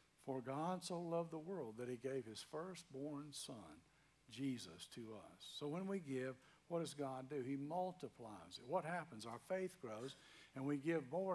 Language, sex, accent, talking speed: English, male, American, 185 wpm